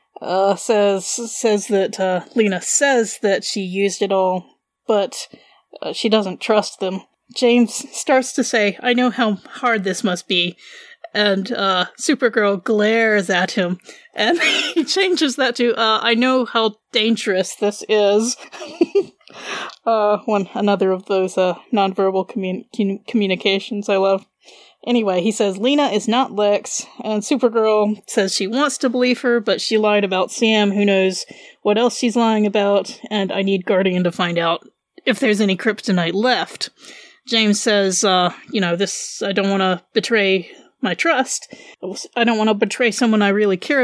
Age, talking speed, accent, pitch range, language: 20-39, 165 wpm, American, 195-245 Hz, English